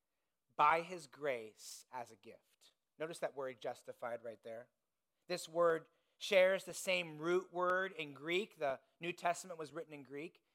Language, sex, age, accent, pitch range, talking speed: English, male, 30-49, American, 155-195 Hz, 160 wpm